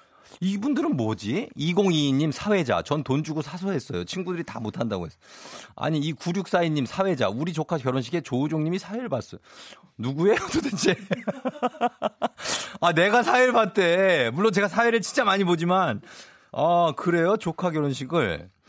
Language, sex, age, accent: Korean, male, 30-49, native